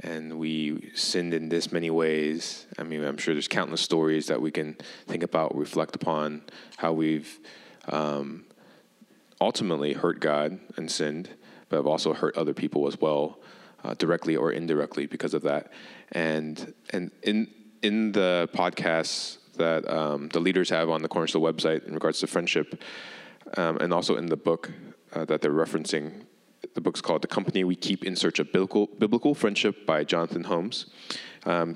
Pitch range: 80-95 Hz